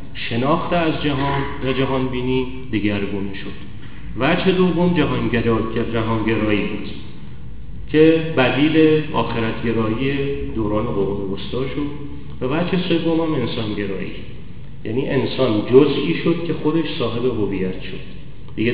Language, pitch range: Persian, 115-140 Hz